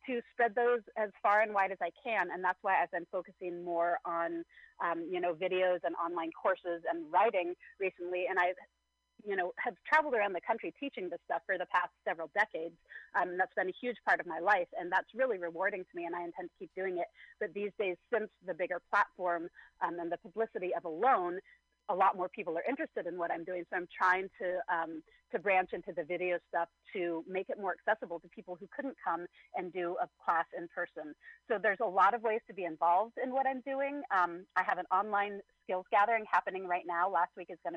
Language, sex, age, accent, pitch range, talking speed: English, female, 30-49, American, 170-215 Hz, 230 wpm